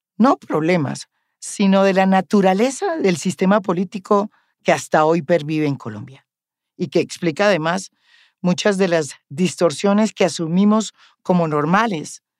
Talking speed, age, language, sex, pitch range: 130 wpm, 40-59, English, female, 145-185 Hz